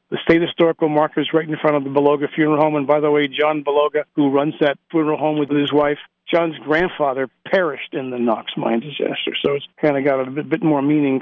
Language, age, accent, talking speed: English, 50-69, American, 235 wpm